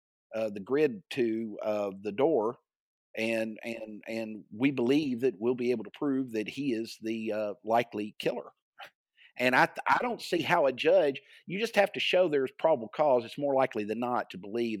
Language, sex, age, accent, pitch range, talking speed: English, male, 50-69, American, 110-140 Hz, 190 wpm